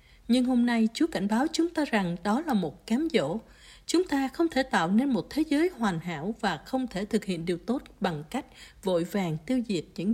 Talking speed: 230 wpm